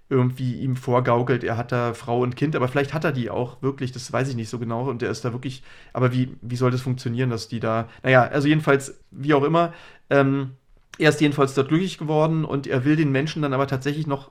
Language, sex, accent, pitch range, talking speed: German, male, German, 125-145 Hz, 245 wpm